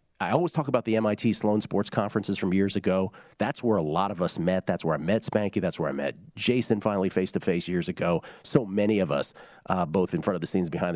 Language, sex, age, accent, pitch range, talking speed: English, male, 40-59, American, 95-115 Hz, 245 wpm